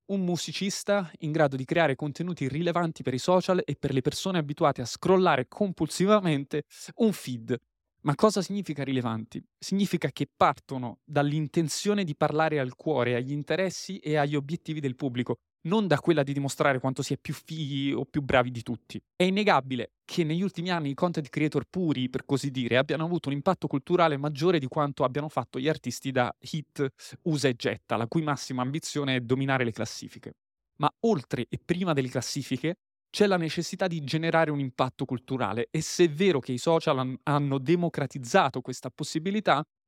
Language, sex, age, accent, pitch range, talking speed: Italian, male, 20-39, native, 135-175 Hz, 180 wpm